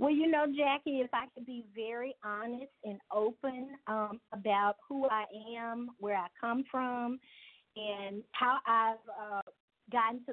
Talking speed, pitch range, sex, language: 155 wpm, 210-255 Hz, female, English